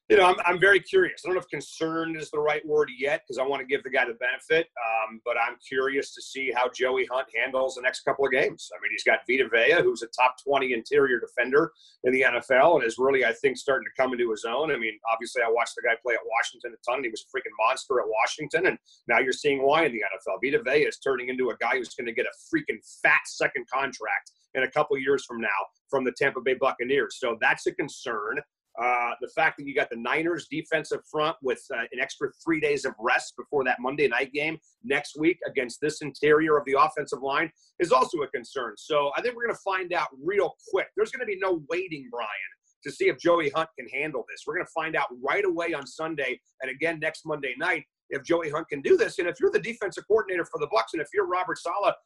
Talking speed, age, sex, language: 255 wpm, 30-49, male, English